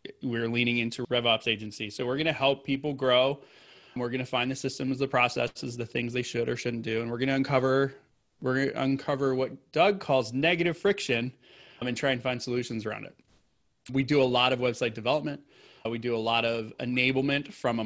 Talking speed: 210 wpm